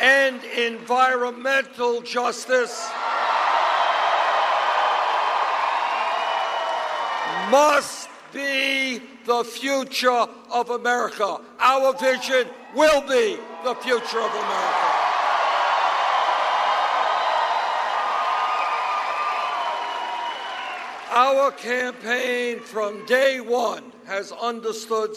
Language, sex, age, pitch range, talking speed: English, male, 60-79, 215-255 Hz, 55 wpm